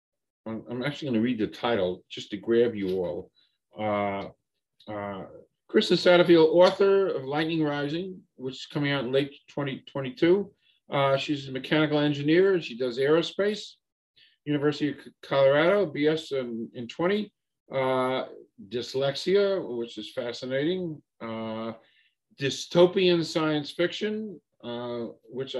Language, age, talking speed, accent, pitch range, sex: English, 50-69, 130 wpm, American, 120-160 Hz, male